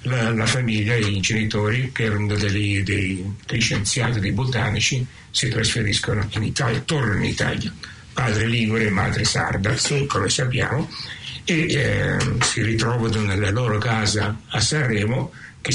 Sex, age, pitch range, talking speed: male, 60-79, 105-125 Hz, 145 wpm